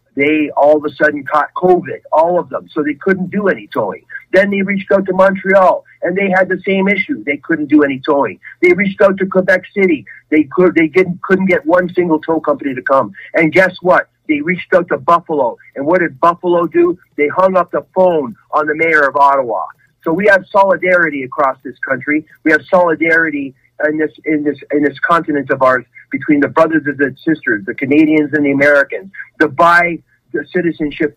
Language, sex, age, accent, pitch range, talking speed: English, male, 50-69, American, 145-180 Hz, 205 wpm